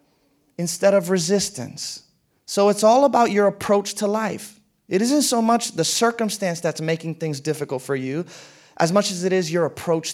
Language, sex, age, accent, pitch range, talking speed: English, male, 30-49, American, 175-230 Hz, 180 wpm